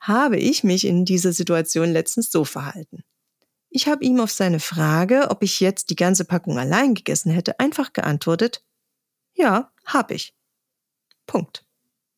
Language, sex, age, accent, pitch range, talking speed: German, female, 40-59, German, 175-255 Hz, 150 wpm